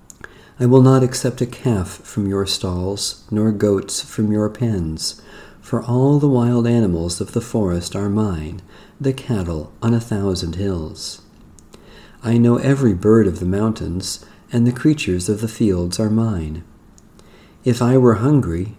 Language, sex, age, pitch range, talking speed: English, male, 50-69, 95-125 Hz, 155 wpm